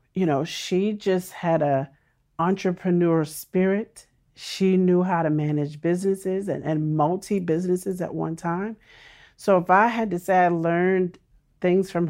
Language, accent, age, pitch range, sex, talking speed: English, American, 40-59, 155-190 Hz, male, 150 wpm